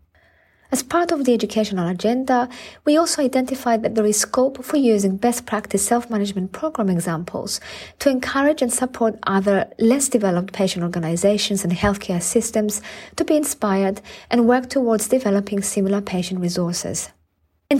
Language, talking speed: English, 145 wpm